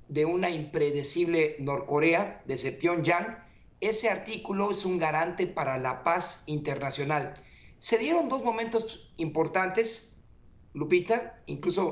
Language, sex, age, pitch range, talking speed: Spanish, male, 40-59, 150-185 Hz, 115 wpm